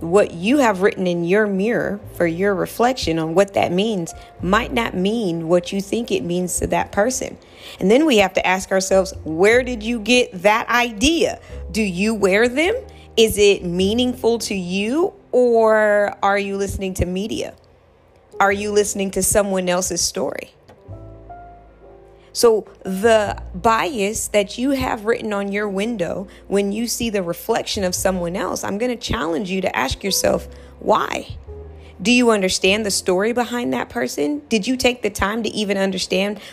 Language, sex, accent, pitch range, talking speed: English, female, American, 185-230 Hz, 170 wpm